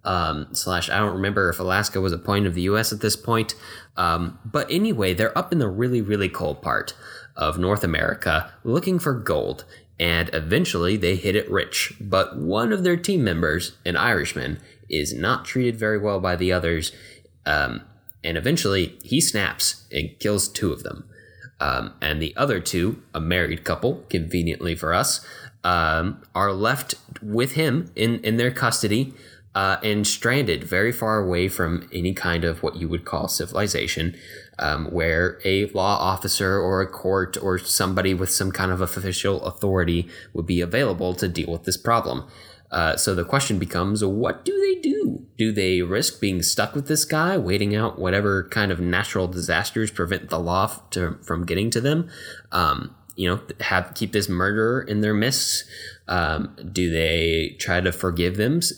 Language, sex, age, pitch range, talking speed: English, male, 10-29, 90-110 Hz, 180 wpm